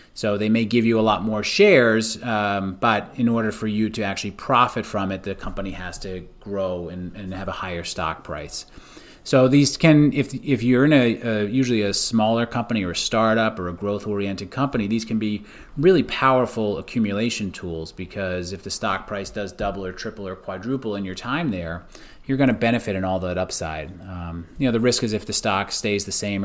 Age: 30-49